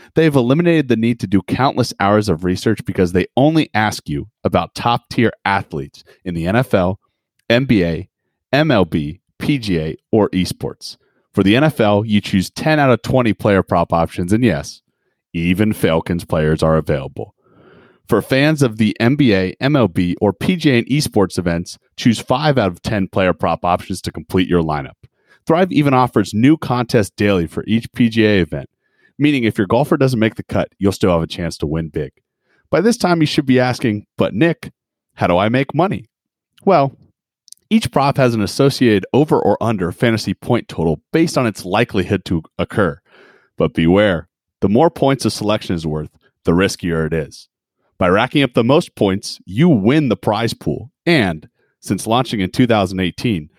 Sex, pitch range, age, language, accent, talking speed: male, 90-125 Hz, 30-49, English, American, 175 wpm